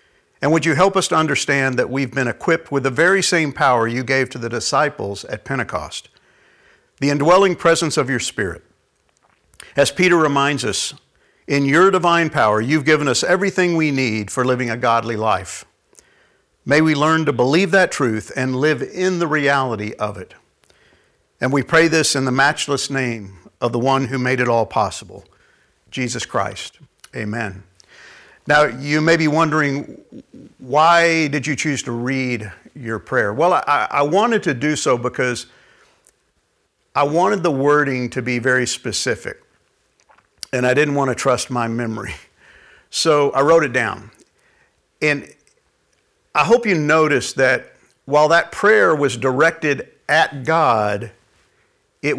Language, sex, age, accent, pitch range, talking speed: English, male, 50-69, American, 125-160 Hz, 160 wpm